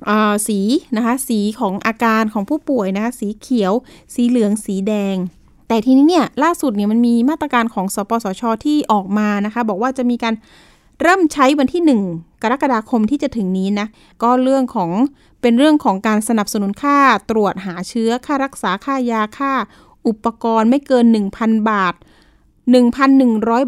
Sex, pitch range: female, 210-265 Hz